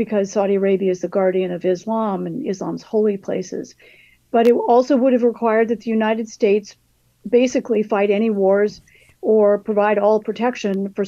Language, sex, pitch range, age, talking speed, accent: English, female, 195-225 Hz, 50-69, 170 wpm, American